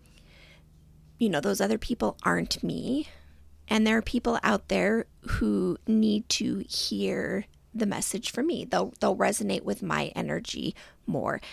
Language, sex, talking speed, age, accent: English, female, 145 wpm, 30-49, American